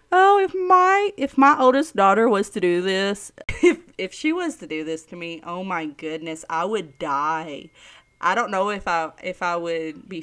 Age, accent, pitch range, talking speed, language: 20-39, American, 175-250 Hz, 205 wpm, English